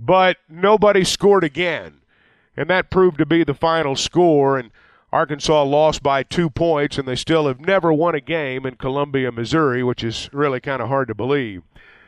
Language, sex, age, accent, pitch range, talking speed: English, male, 50-69, American, 140-190 Hz, 185 wpm